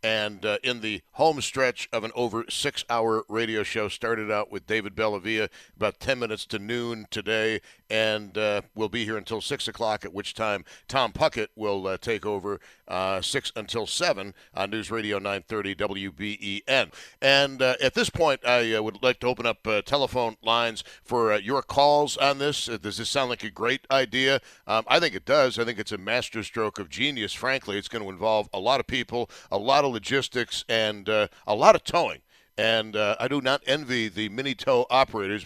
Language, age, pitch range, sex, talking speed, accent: English, 60-79, 105-130 Hz, male, 200 wpm, American